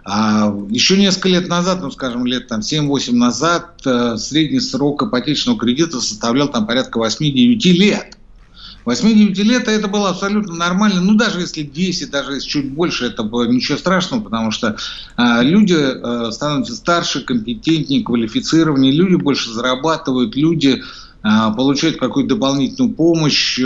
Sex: male